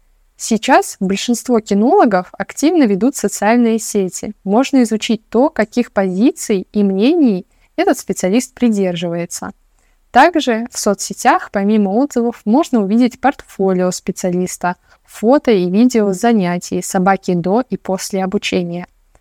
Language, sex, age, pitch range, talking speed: Russian, female, 20-39, 190-230 Hz, 110 wpm